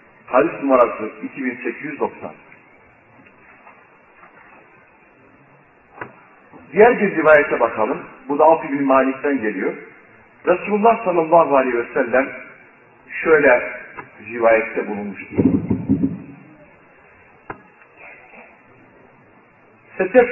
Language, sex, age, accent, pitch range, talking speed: Turkish, male, 50-69, native, 125-175 Hz, 60 wpm